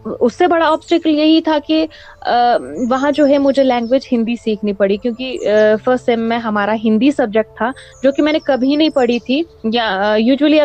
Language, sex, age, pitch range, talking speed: Urdu, female, 20-39, 235-305 Hz, 185 wpm